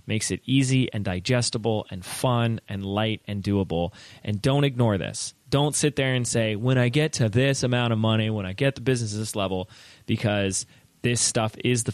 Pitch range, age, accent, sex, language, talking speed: 115-170 Hz, 20-39, American, male, English, 200 wpm